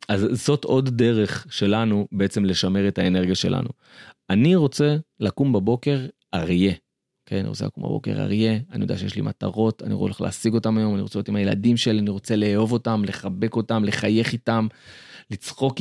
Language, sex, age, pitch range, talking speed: Hebrew, male, 30-49, 105-130 Hz, 175 wpm